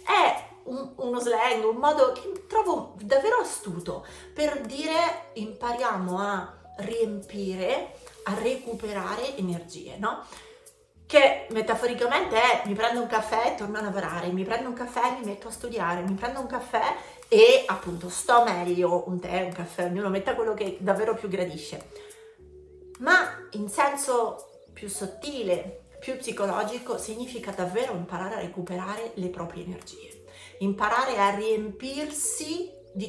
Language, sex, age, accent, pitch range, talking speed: Italian, female, 30-49, native, 200-295 Hz, 140 wpm